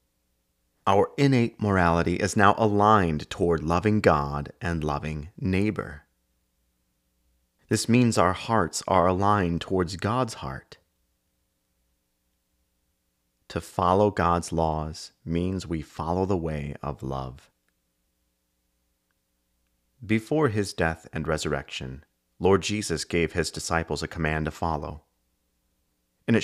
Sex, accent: male, American